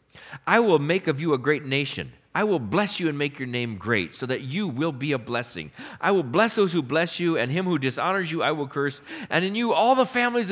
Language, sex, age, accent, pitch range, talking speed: English, male, 50-69, American, 135-220 Hz, 255 wpm